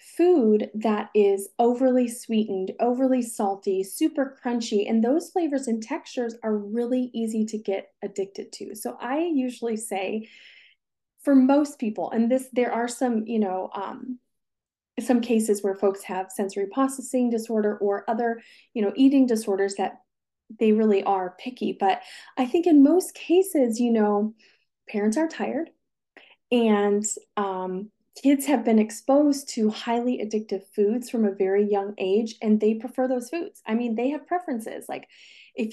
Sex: female